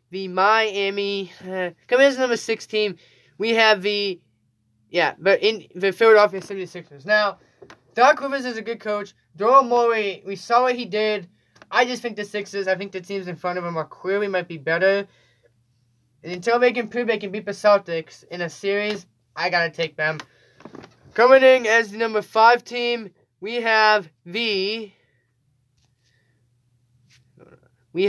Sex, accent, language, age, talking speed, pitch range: male, American, English, 20-39, 170 wpm, 160-220 Hz